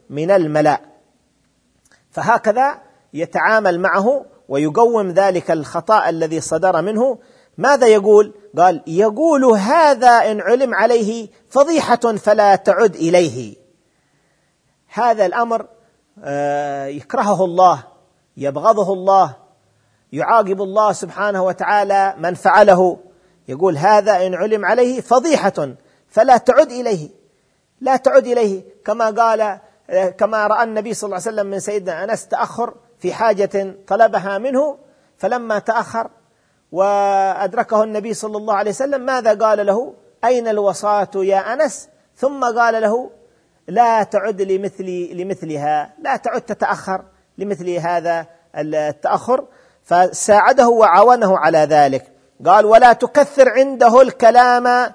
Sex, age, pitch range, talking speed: male, 40-59, 185-235 Hz, 110 wpm